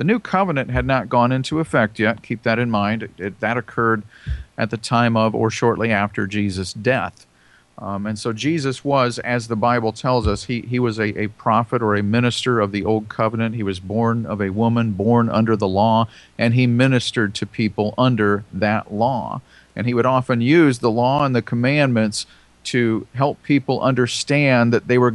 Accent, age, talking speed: American, 50-69, 200 wpm